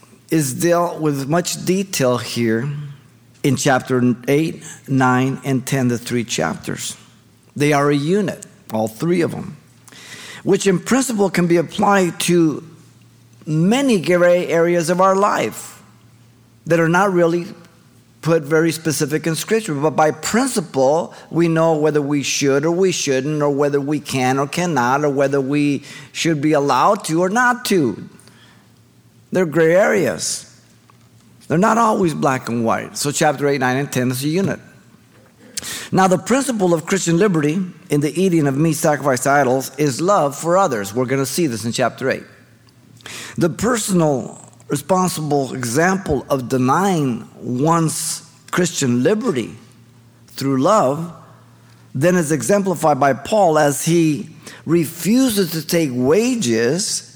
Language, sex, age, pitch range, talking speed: English, male, 50-69, 130-175 Hz, 145 wpm